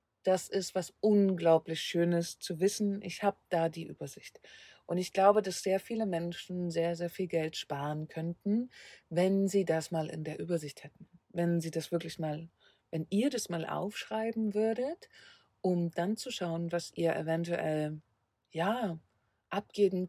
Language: German